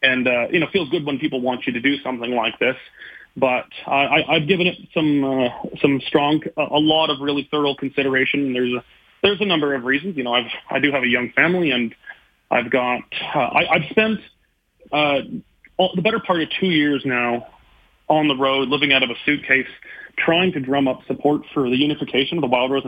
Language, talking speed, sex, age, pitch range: English, 215 wpm, male, 30-49, 130-155 Hz